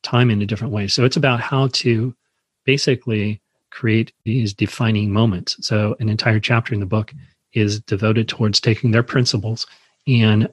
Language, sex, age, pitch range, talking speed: English, male, 40-59, 105-125 Hz, 165 wpm